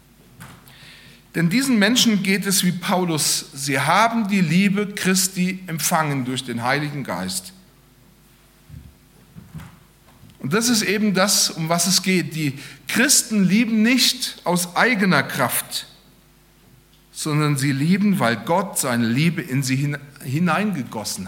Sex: male